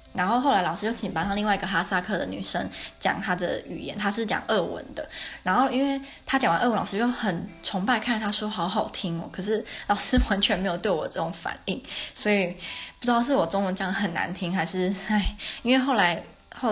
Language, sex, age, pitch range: Chinese, female, 20-39, 185-245 Hz